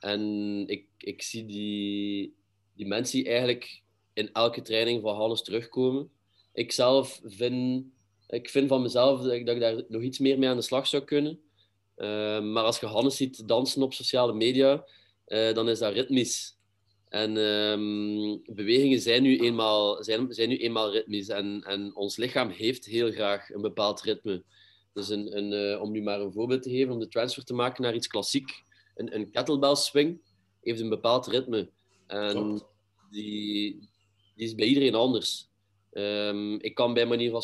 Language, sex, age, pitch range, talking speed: Dutch, male, 30-49, 105-125 Hz, 160 wpm